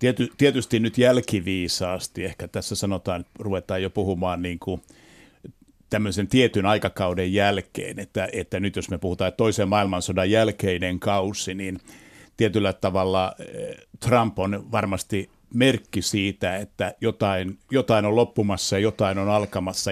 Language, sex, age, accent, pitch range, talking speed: Finnish, male, 60-79, native, 95-110 Hz, 120 wpm